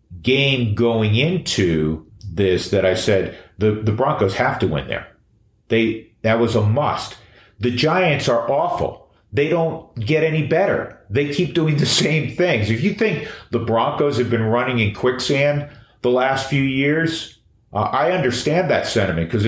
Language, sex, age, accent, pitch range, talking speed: English, male, 40-59, American, 100-125 Hz, 165 wpm